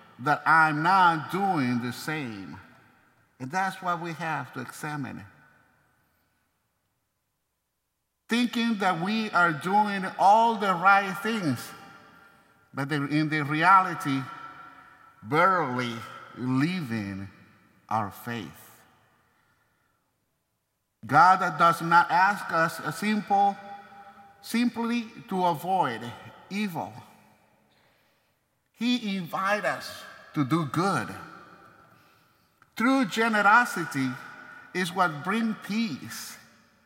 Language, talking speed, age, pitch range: English, 85 wpm, 50-69, 150-215 Hz